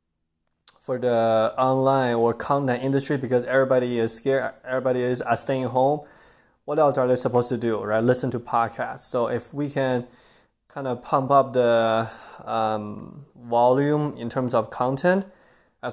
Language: English